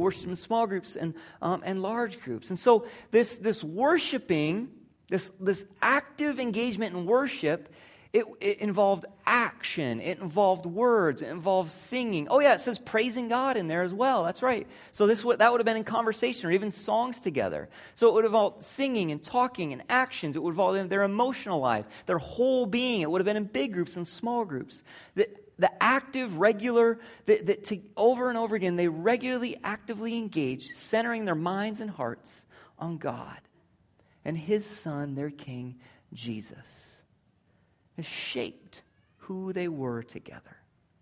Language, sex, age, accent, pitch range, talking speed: English, male, 40-59, American, 165-235 Hz, 170 wpm